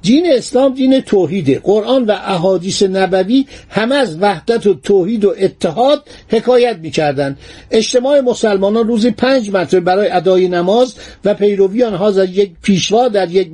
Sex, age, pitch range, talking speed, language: male, 50-69, 185-245 Hz, 145 wpm, Persian